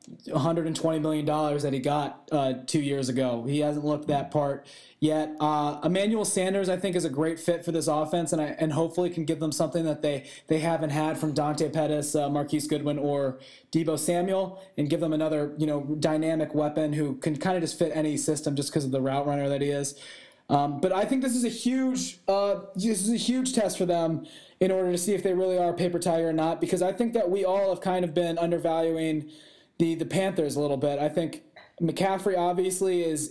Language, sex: English, male